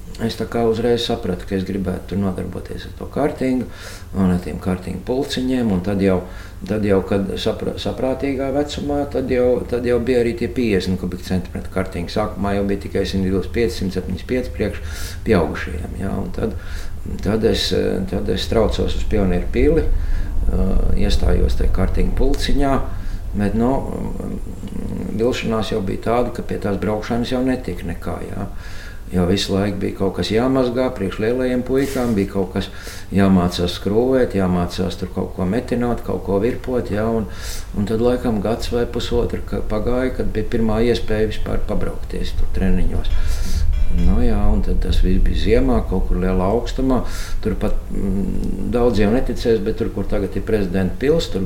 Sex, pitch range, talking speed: male, 90-115 Hz, 160 wpm